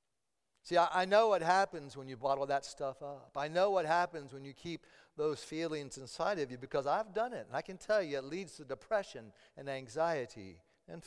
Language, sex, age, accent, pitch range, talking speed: English, male, 50-69, American, 160-210 Hz, 210 wpm